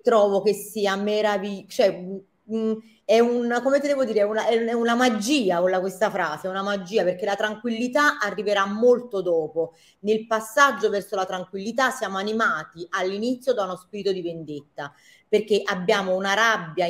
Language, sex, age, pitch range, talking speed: Italian, female, 30-49, 185-230 Hz, 155 wpm